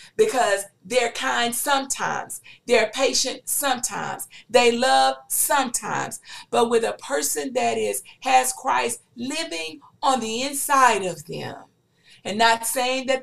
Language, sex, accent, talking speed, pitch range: English, female, American, 125 wpm, 200-270 Hz